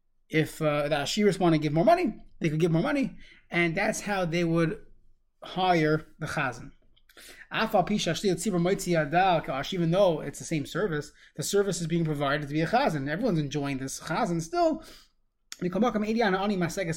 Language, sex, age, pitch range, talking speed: English, male, 20-39, 165-220 Hz, 155 wpm